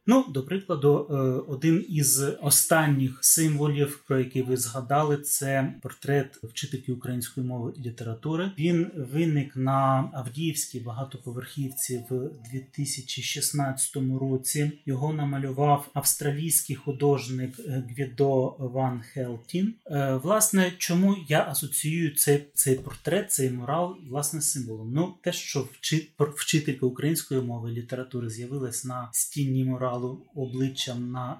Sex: male